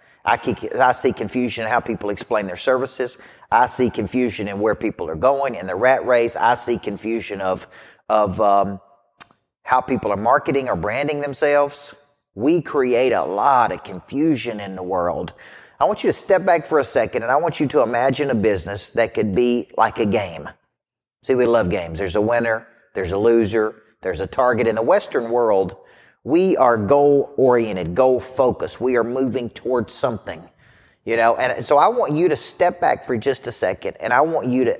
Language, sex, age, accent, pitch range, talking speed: English, male, 40-59, American, 105-130 Hz, 195 wpm